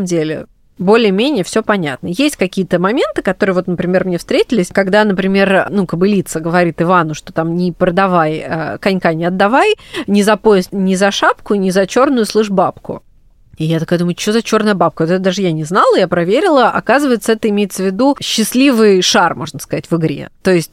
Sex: female